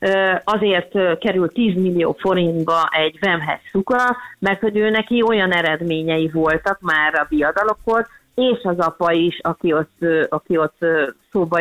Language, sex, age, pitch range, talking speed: Hungarian, female, 30-49, 170-210 Hz, 130 wpm